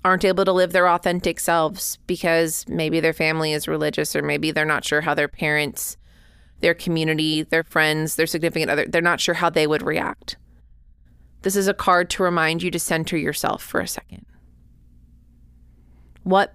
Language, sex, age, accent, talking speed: English, female, 30-49, American, 180 wpm